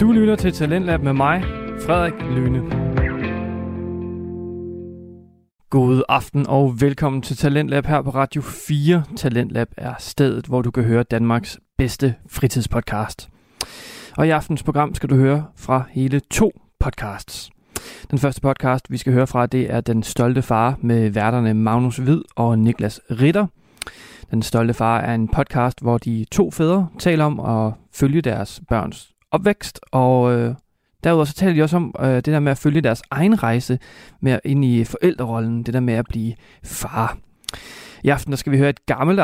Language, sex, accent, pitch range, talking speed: Danish, male, native, 120-150 Hz, 165 wpm